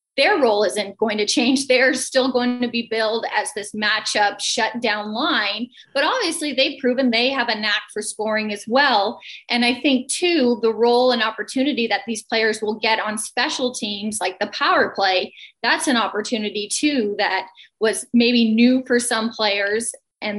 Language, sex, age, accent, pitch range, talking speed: English, female, 20-39, American, 210-250 Hz, 185 wpm